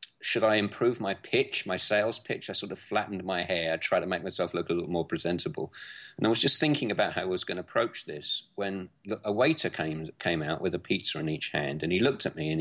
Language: English